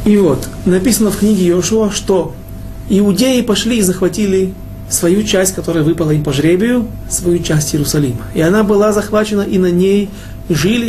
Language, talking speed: Russian, 160 wpm